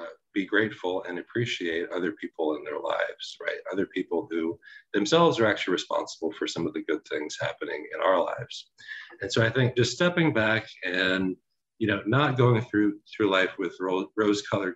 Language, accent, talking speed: English, American, 180 wpm